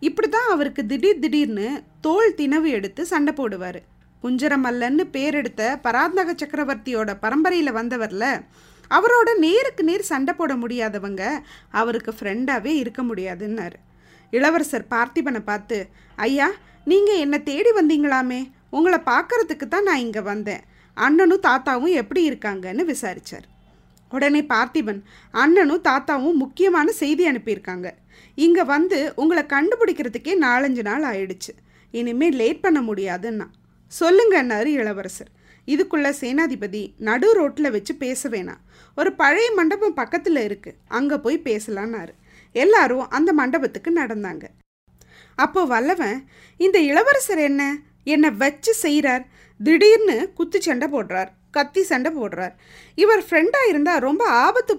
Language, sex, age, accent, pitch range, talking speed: Tamil, female, 20-39, native, 225-335 Hz, 115 wpm